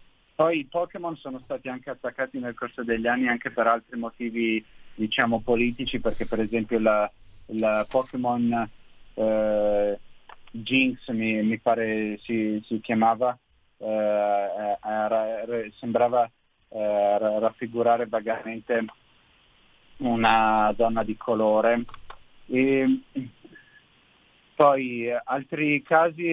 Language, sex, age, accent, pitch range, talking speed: Italian, male, 30-49, native, 110-125 Hz, 95 wpm